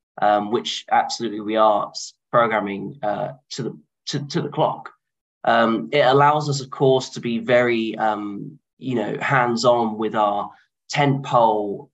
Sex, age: male, 10-29